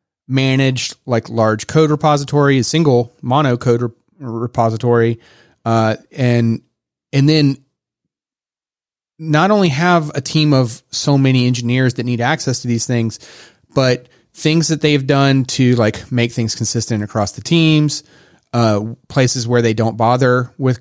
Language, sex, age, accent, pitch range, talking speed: English, male, 30-49, American, 115-140 Hz, 140 wpm